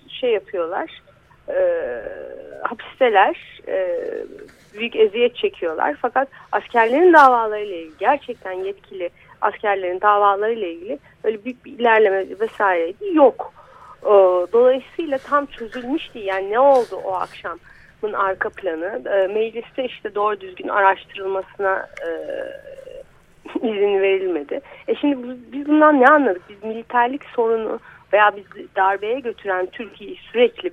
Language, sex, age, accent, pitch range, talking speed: Turkish, female, 40-59, native, 205-340 Hz, 115 wpm